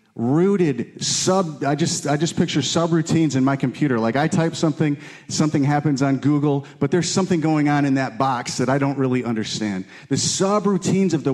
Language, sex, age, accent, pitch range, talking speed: English, male, 40-59, American, 130-165 Hz, 190 wpm